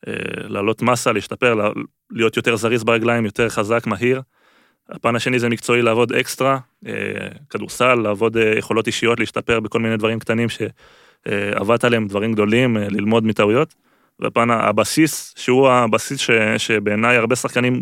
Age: 20-39